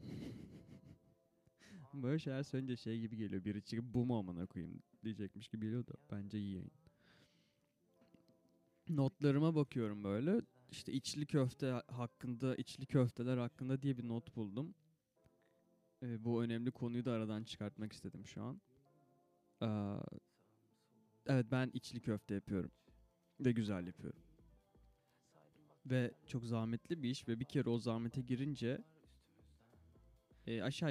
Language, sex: Turkish, male